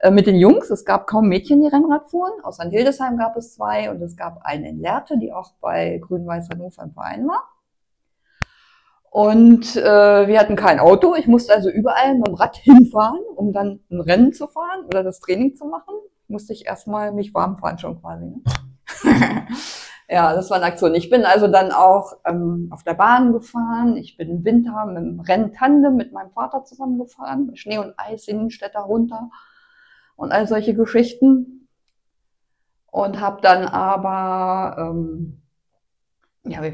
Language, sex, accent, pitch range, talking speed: German, female, German, 175-255 Hz, 170 wpm